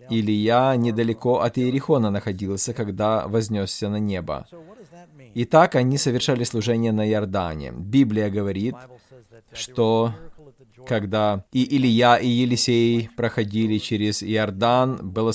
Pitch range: 105-140 Hz